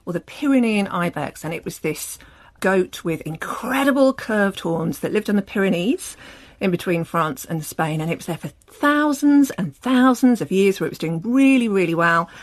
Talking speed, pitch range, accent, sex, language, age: 195 wpm, 165-225 Hz, British, female, English, 50-69